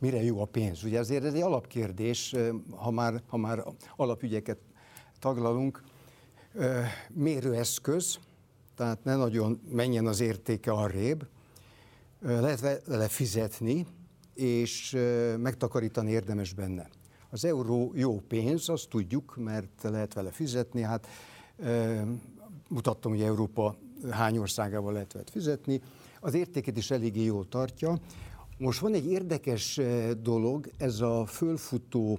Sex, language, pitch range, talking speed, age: male, Hungarian, 110-130 Hz, 120 wpm, 60-79